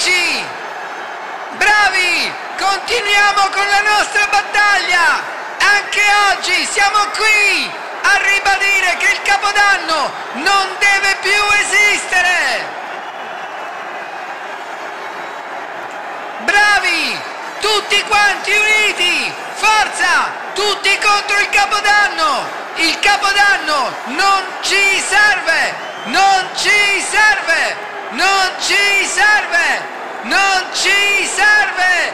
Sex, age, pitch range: male, 50-69, 380-410 Hz